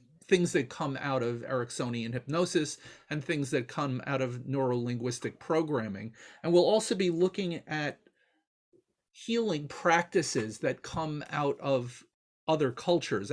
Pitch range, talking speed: 125-165 Hz, 130 wpm